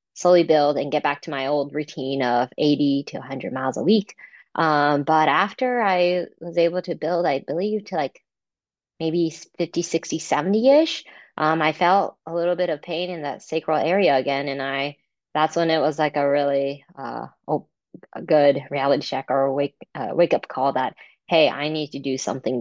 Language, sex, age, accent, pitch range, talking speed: English, female, 20-39, American, 135-160 Hz, 195 wpm